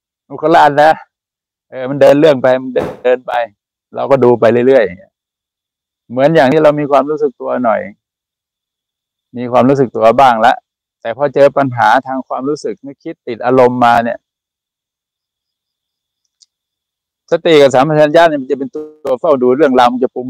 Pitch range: 120-150 Hz